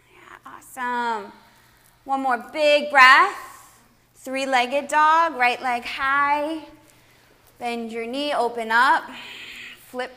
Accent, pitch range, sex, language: American, 240-300 Hz, female, English